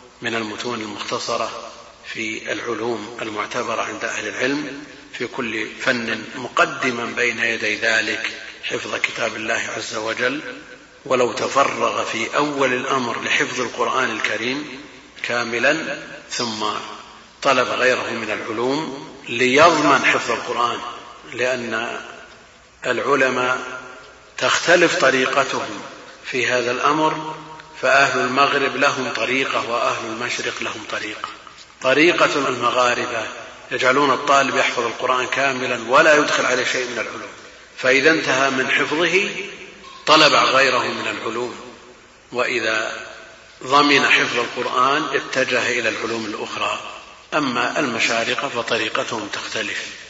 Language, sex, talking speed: Arabic, male, 105 wpm